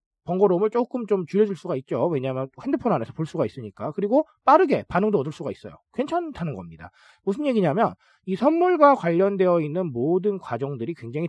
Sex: male